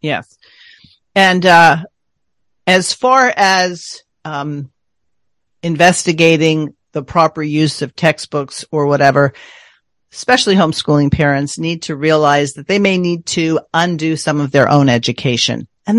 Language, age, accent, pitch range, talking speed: English, 50-69, American, 140-170 Hz, 125 wpm